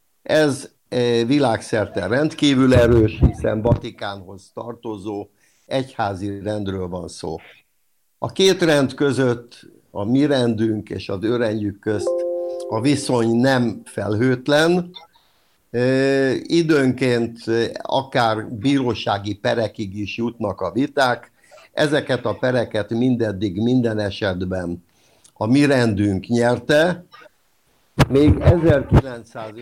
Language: Hungarian